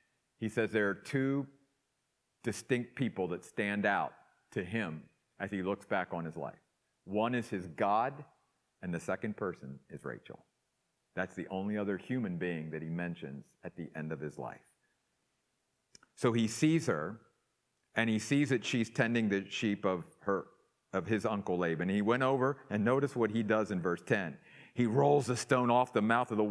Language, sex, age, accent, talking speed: English, male, 50-69, American, 185 wpm